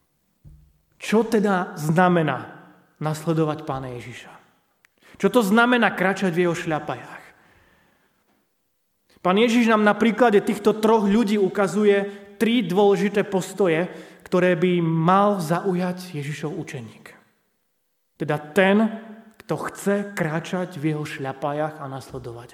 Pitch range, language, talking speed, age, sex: 150-205 Hz, Slovak, 110 wpm, 30-49, male